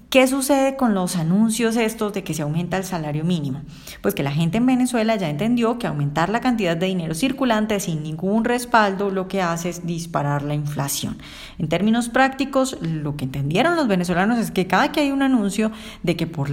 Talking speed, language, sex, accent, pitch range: 205 wpm, Spanish, female, Colombian, 165-220 Hz